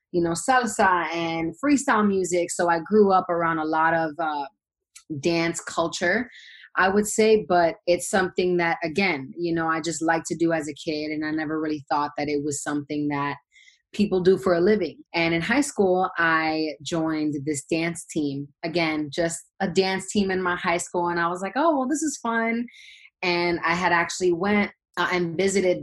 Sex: female